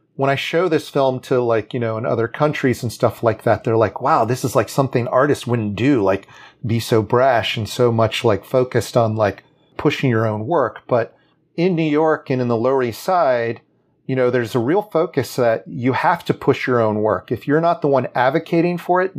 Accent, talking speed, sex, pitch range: American, 230 wpm, male, 115-145 Hz